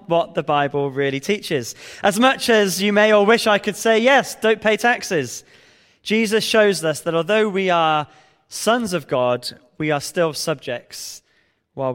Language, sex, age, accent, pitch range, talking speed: English, male, 20-39, British, 155-215 Hz, 170 wpm